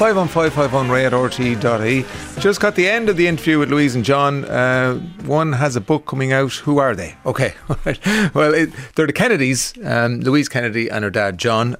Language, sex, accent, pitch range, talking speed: English, male, Irish, 105-145 Hz, 180 wpm